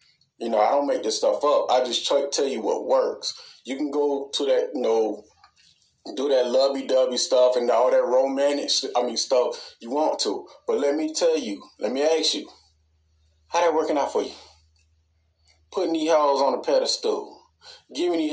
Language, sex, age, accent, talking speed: English, male, 20-39, American, 195 wpm